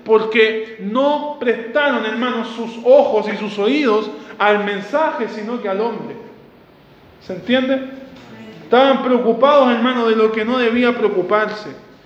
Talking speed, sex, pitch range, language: 130 wpm, male, 200-230 Hz, Spanish